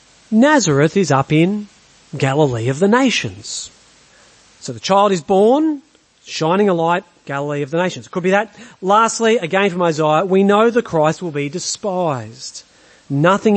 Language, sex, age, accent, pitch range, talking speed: English, male, 40-59, Australian, 155-215 Hz, 155 wpm